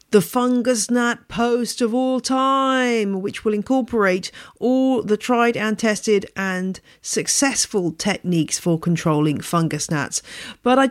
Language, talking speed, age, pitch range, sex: English, 130 wpm, 40-59, 185-255 Hz, female